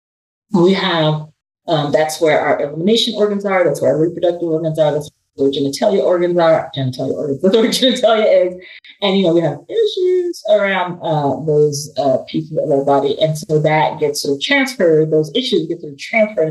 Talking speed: 190 wpm